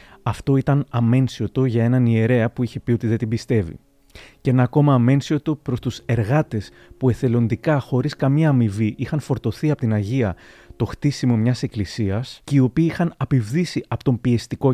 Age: 30-49